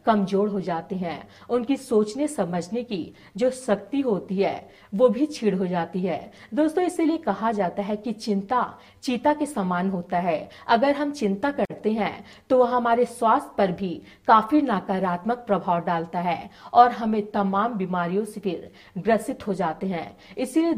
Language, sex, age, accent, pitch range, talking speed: Hindi, female, 40-59, native, 190-245 Hz, 160 wpm